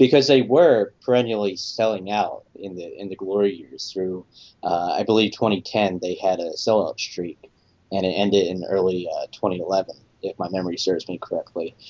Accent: American